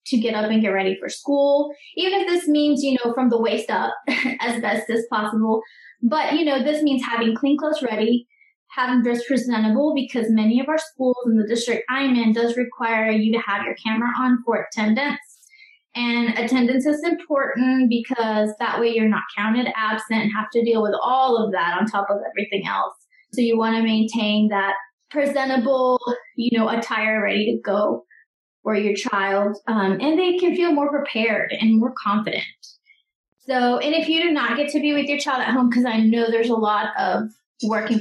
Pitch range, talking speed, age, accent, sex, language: 215-265 Hz, 200 wpm, 20-39, American, female, English